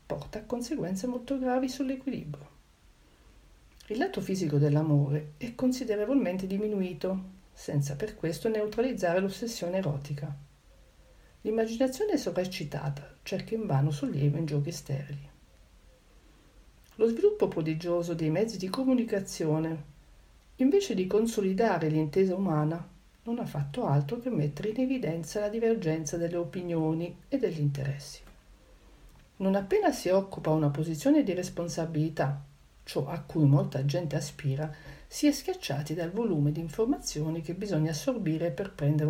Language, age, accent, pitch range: Italian, 50-69, native, 145-210 Hz